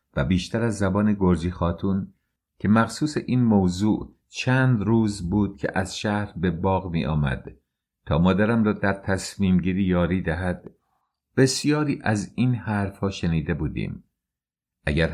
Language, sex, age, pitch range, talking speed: English, male, 50-69, 90-110 Hz, 135 wpm